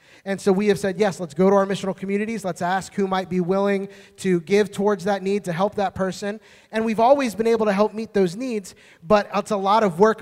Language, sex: English, male